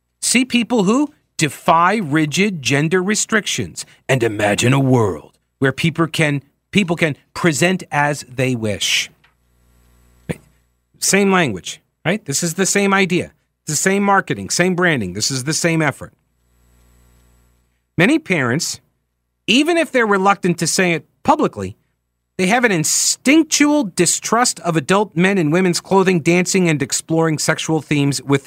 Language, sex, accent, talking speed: English, male, American, 140 wpm